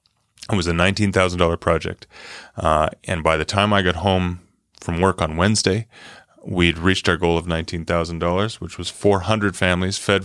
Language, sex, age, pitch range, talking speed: English, male, 30-49, 90-115 Hz, 165 wpm